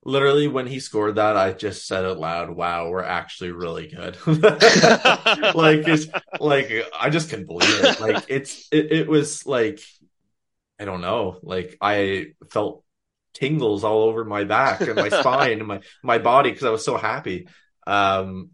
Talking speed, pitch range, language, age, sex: 170 wpm, 95-135 Hz, English, 20-39, male